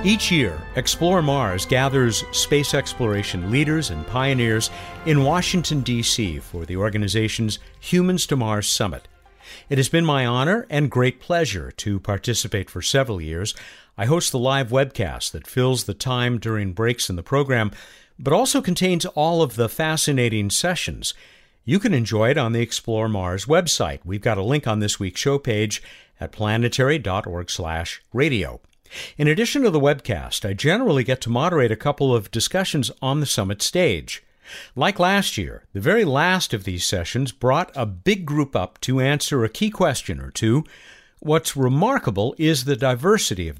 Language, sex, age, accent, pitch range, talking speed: English, male, 50-69, American, 105-145 Hz, 165 wpm